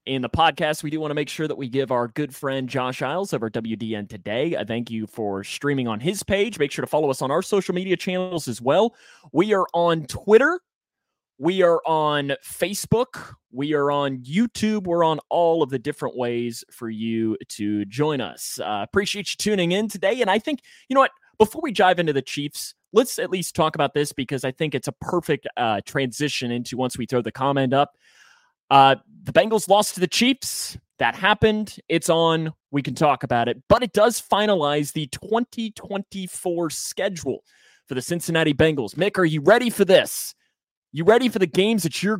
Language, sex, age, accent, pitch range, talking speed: English, male, 30-49, American, 135-195 Hz, 205 wpm